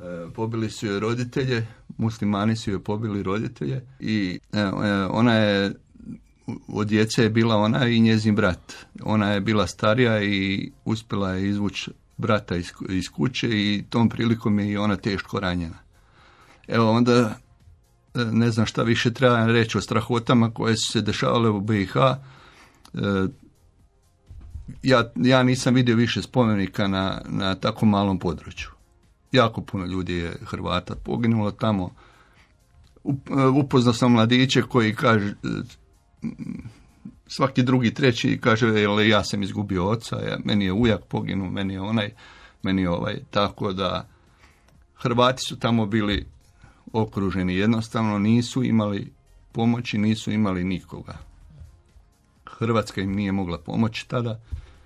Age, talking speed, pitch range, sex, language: 60-79, 125 wpm, 95-115 Hz, male, Croatian